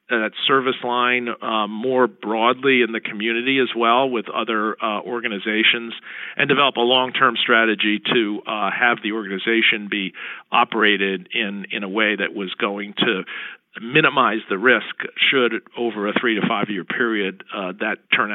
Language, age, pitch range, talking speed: English, 50-69, 110-130 Hz, 160 wpm